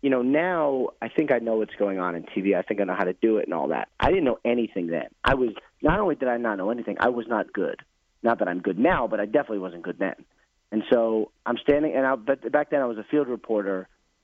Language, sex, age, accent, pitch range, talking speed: English, male, 30-49, American, 105-130 Hz, 270 wpm